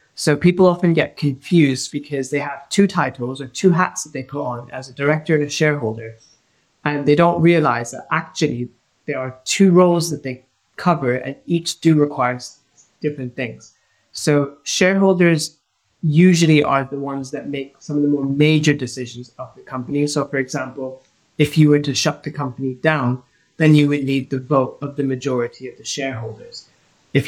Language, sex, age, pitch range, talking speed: English, male, 30-49, 130-155 Hz, 185 wpm